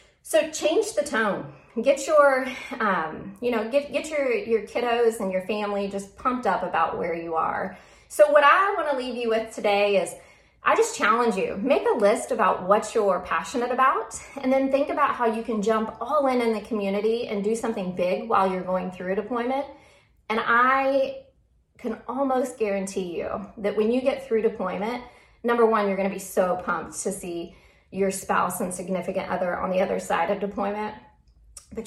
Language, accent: English, American